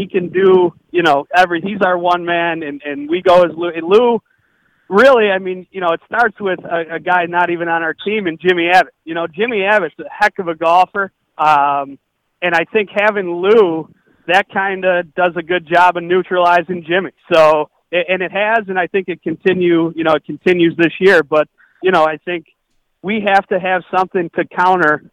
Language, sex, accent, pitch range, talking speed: English, male, American, 165-195 Hz, 215 wpm